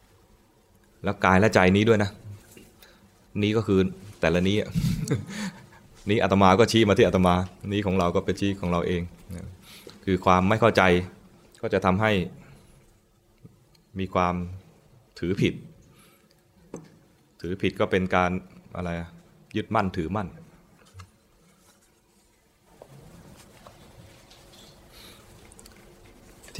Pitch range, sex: 90-105 Hz, male